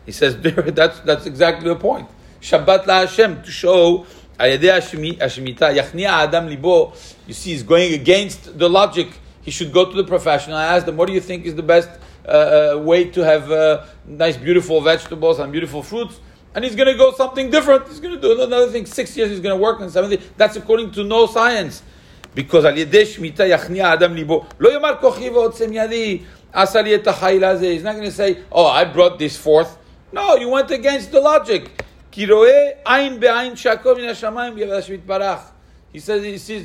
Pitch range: 165-230 Hz